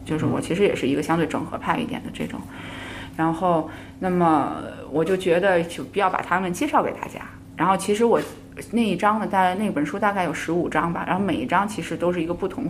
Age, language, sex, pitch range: 20-39, Chinese, female, 160-205 Hz